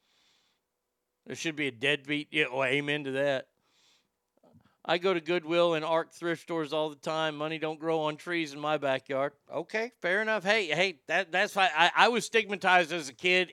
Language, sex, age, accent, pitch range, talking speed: English, male, 50-69, American, 140-175 Hz, 195 wpm